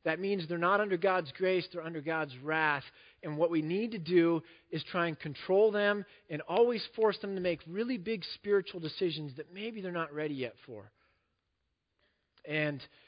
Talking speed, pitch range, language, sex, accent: 185 wpm, 145-190 Hz, English, male, American